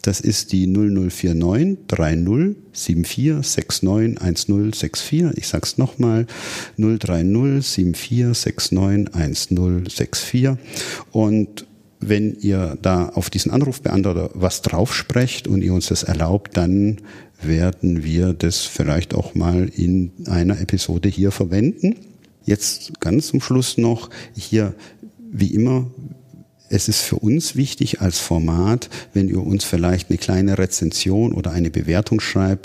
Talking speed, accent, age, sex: 125 wpm, German, 50-69, male